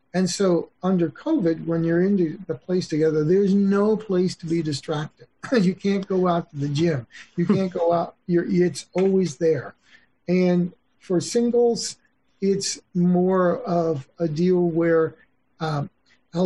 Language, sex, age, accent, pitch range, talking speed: English, male, 50-69, American, 150-185 Hz, 150 wpm